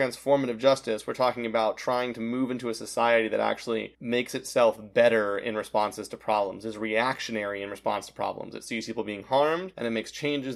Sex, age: male, 30-49